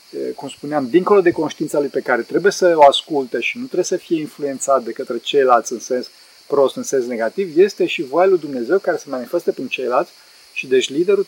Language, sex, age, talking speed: Romanian, male, 40-59, 205 wpm